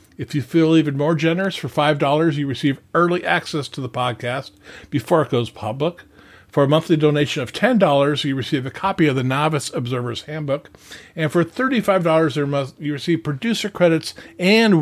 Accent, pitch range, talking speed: American, 130-170 Hz, 190 wpm